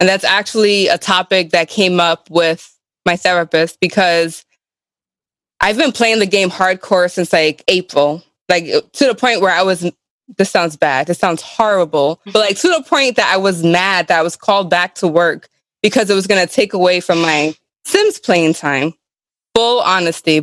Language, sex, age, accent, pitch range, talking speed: English, female, 20-39, American, 175-200 Hz, 190 wpm